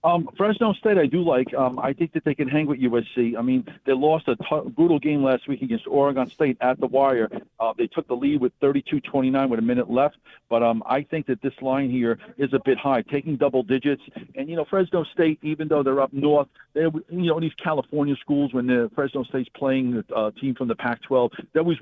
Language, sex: English, male